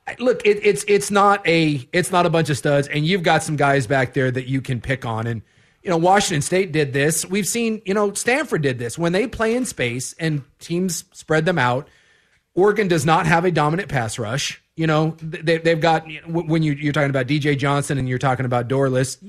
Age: 30-49